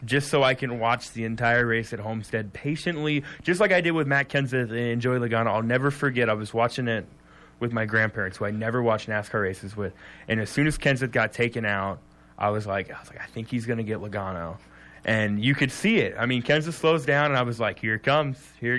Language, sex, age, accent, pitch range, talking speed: English, male, 20-39, American, 110-145 Hz, 245 wpm